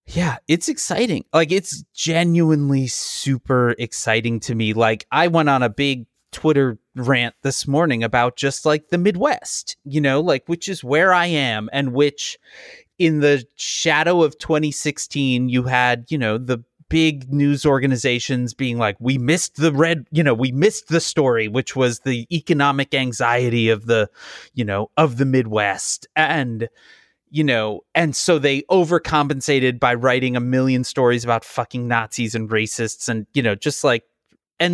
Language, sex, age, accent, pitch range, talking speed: English, male, 30-49, American, 125-165 Hz, 165 wpm